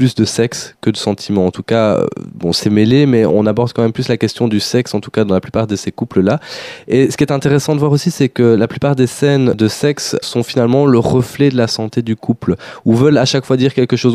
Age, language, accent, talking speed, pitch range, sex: 20-39, French, French, 270 wpm, 100-125 Hz, male